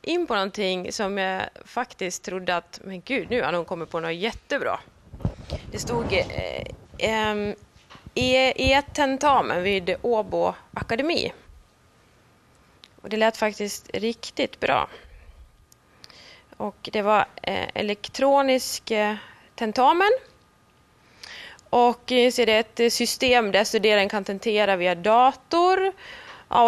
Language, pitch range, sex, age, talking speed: Swedish, 205-255 Hz, female, 20-39, 115 wpm